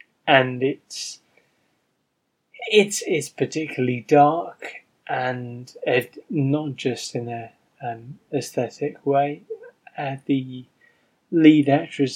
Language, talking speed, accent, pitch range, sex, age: English, 95 wpm, British, 130-150 Hz, male, 10-29